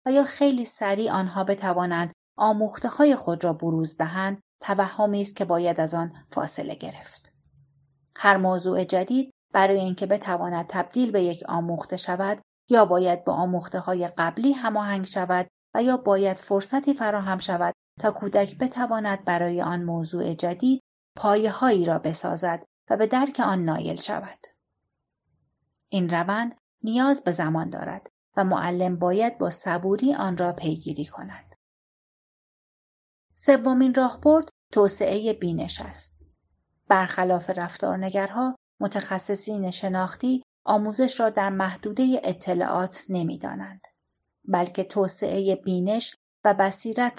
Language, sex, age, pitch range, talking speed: Persian, female, 30-49, 175-215 Hz, 120 wpm